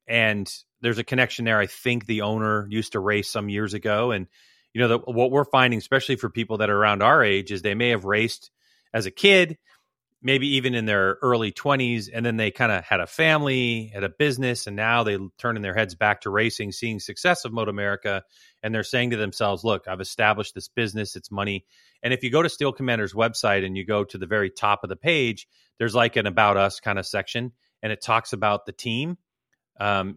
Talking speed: 225 wpm